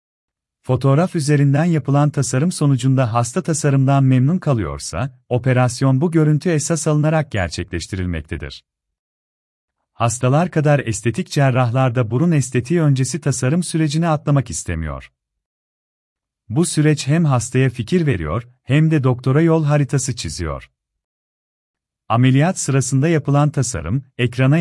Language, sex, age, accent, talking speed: Turkish, male, 40-59, native, 105 wpm